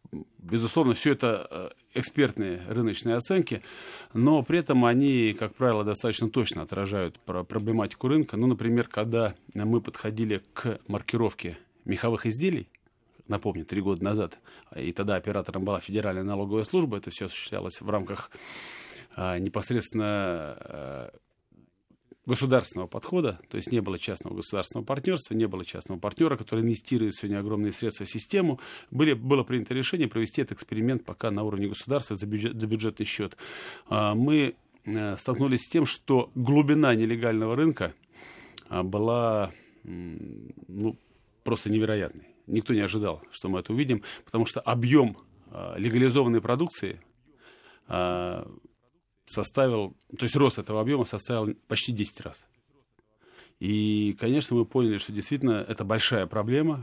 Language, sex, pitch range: Russian, male, 105-125 Hz